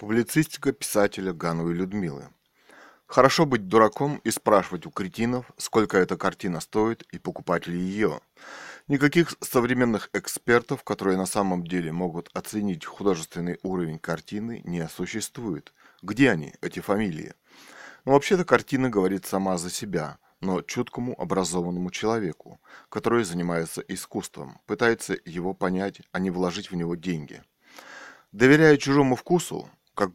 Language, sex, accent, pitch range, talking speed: Russian, male, native, 95-120 Hz, 125 wpm